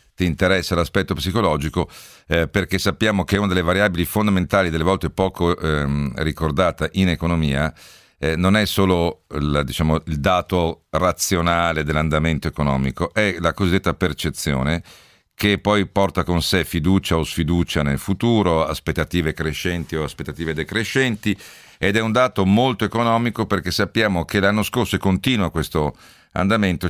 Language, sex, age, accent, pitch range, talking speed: Italian, male, 50-69, native, 80-100 Hz, 145 wpm